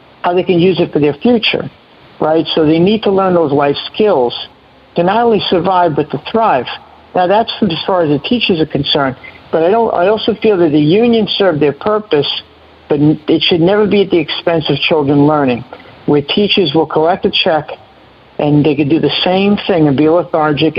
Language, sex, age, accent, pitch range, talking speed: English, male, 50-69, American, 145-185 Hz, 210 wpm